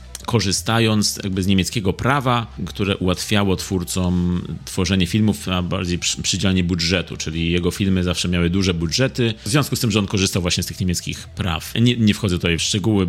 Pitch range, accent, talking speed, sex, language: 95-115 Hz, native, 180 wpm, male, Polish